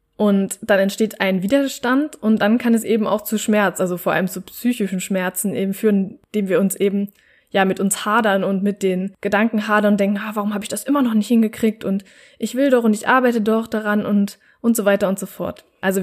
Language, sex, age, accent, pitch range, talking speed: German, female, 20-39, German, 195-220 Hz, 230 wpm